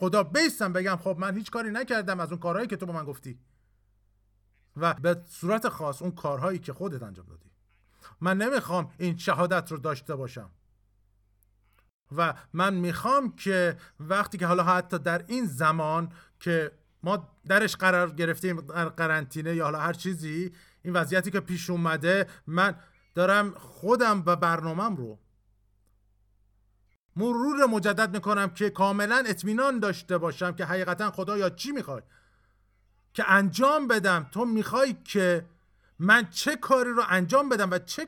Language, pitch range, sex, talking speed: Persian, 130-195 Hz, male, 150 wpm